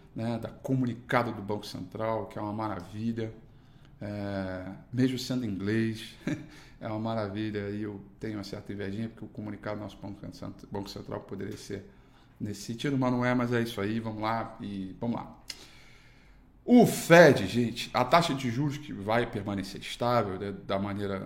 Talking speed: 170 wpm